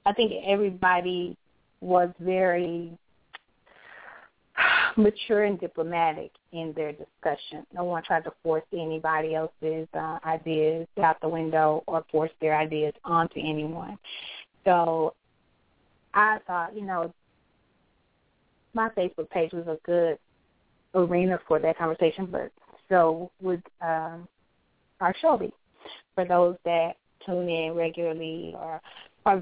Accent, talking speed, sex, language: American, 120 wpm, female, English